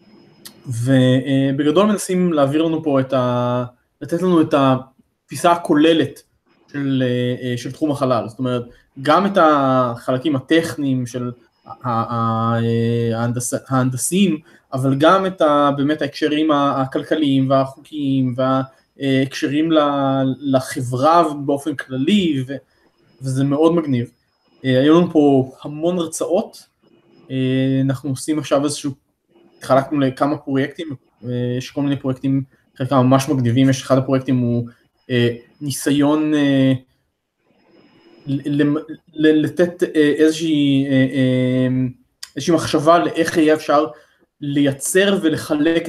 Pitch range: 130-150 Hz